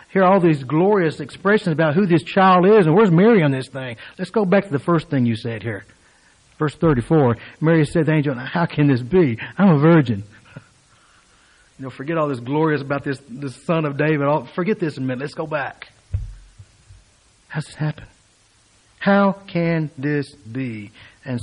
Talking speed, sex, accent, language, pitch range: 190 wpm, male, American, English, 125-160 Hz